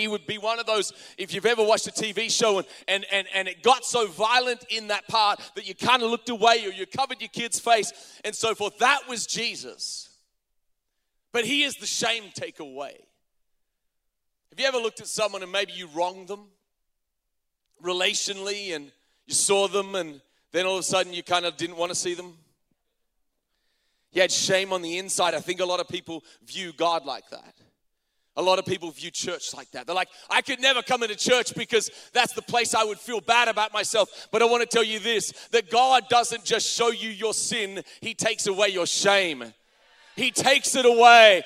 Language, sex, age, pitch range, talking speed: English, male, 30-49, 190-265 Hz, 210 wpm